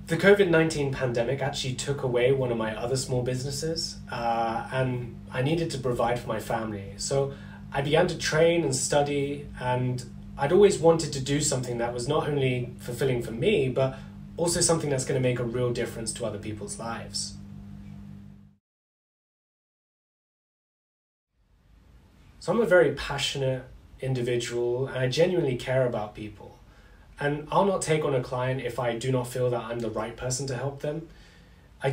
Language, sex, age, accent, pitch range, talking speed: English, male, 20-39, British, 120-145 Hz, 165 wpm